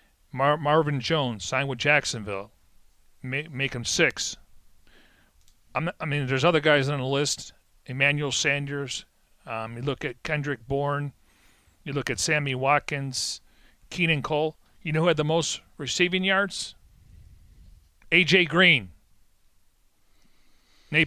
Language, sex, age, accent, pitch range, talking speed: English, male, 40-59, American, 135-165 Hz, 120 wpm